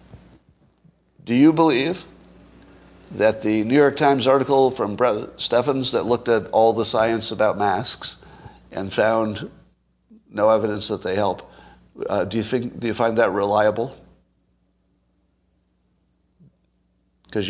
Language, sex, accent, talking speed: English, male, American, 125 wpm